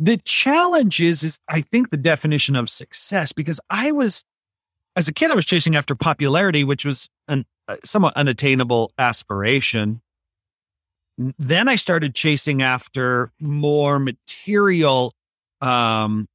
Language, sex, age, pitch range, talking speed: English, male, 40-59, 115-155 Hz, 130 wpm